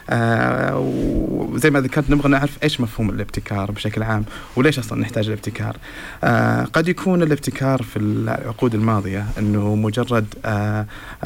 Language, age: Arabic, 30-49